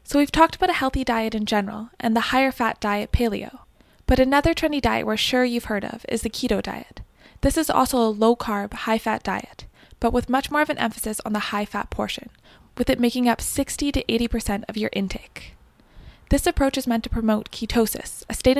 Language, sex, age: English, female, 20-39